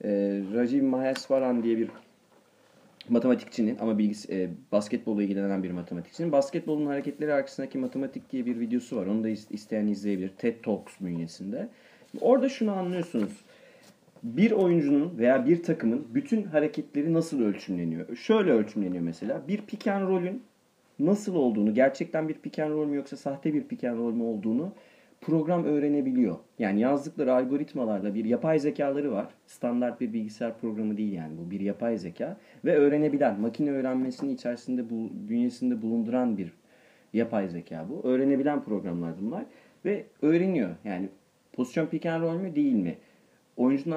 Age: 40-59